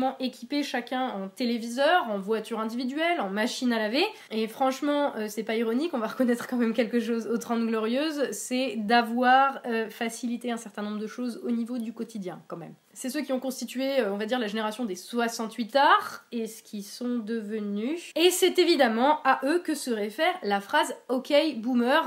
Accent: French